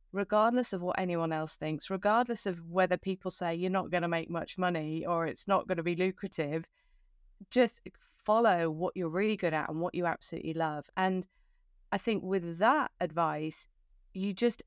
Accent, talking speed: British, 185 wpm